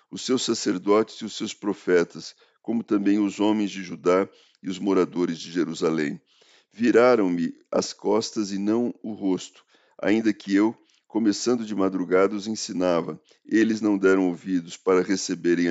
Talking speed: 150 wpm